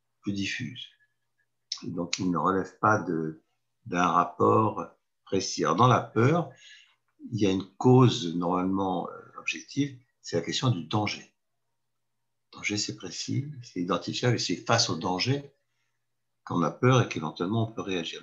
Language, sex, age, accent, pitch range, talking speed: French, male, 60-79, French, 95-130 Hz, 160 wpm